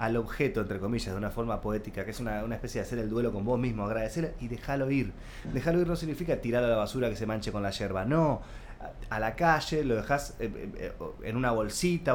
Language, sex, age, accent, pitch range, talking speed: Spanish, male, 20-39, Argentinian, 110-160 Hz, 230 wpm